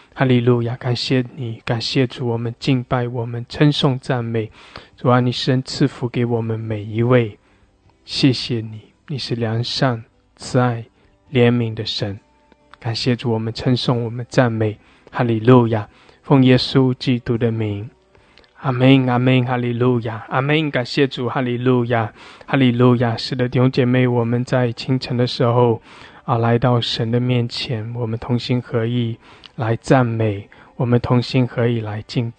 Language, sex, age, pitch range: English, male, 20-39, 115-130 Hz